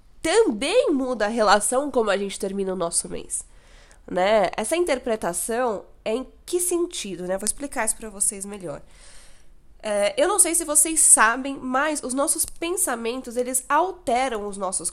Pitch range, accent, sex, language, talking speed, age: 225-310 Hz, Brazilian, female, Portuguese, 160 wpm, 10-29